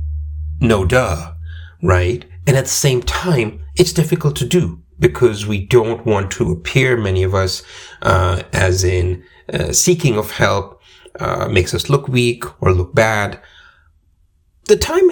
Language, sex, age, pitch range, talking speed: English, male, 30-49, 90-120 Hz, 150 wpm